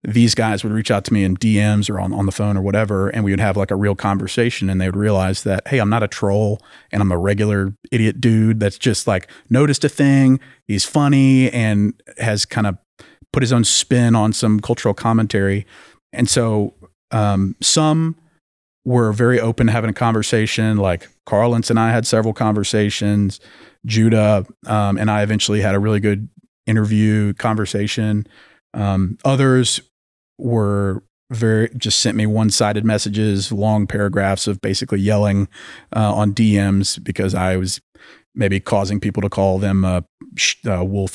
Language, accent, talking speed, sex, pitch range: English, American, 170 wpm, male, 100-115 Hz